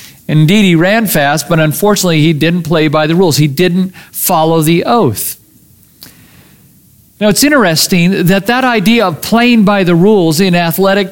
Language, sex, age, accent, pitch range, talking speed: English, male, 50-69, American, 165-210 Hz, 160 wpm